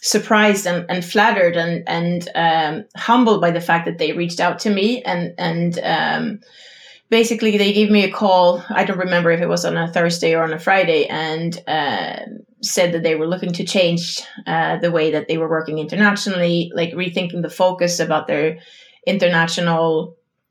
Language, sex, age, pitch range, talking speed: English, female, 20-39, 170-210 Hz, 185 wpm